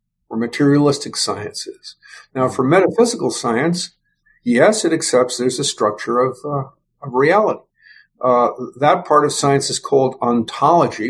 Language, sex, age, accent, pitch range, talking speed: English, male, 50-69, American, 120-145 Hz, 135 wpm